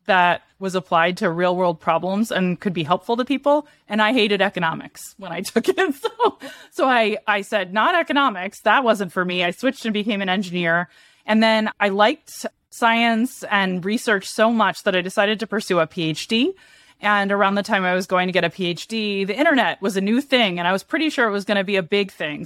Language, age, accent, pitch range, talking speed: English, 20-39, American, 175-215 Hz, 225 wpm